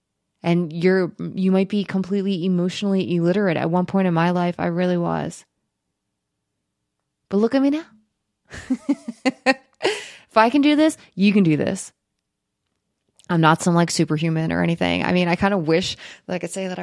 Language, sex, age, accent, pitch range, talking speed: English, female, 20-39, American, 160-195 Hz, 175 wpm